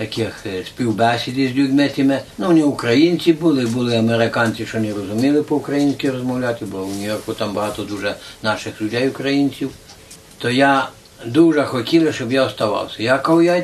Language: Ukrainian